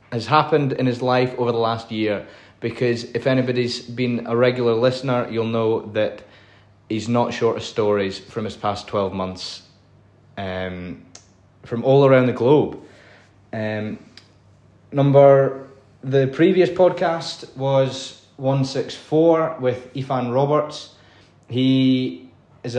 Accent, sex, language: British, male, English